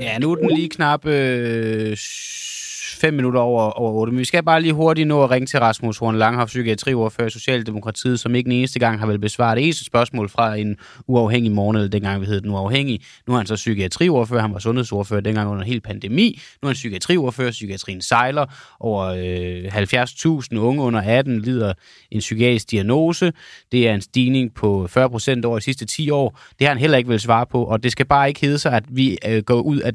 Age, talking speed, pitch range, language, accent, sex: 20-39, 220 wpm, 105-130 Hz, Danish, native, male